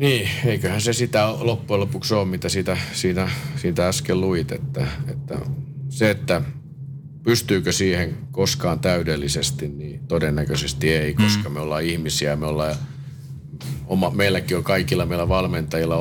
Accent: native